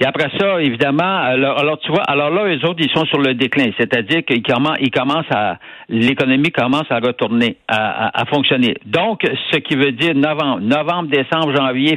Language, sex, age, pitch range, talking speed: French, male, 60-79, 140-190 Hz, 190 wpm